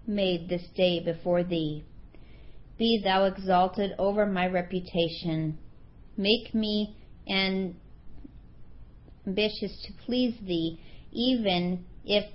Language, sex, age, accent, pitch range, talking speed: English, female, 40-59, American, 175-205 Hz, 95 wpm